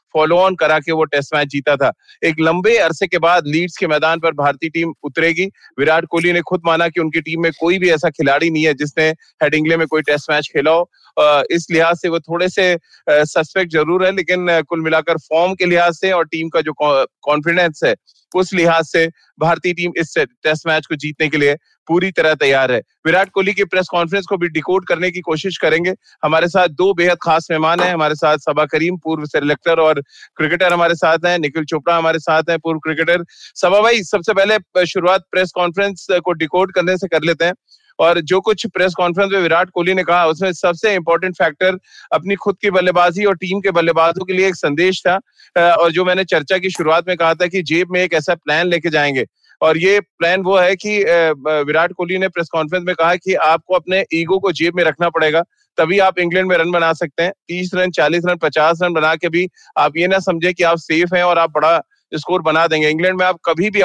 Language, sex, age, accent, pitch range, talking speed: Hindi, male, 30-49, native, 160-185 Hz, 210 wpm